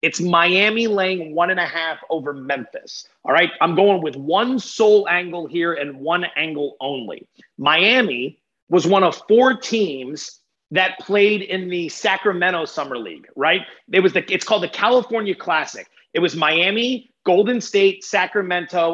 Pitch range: 170-220 Hz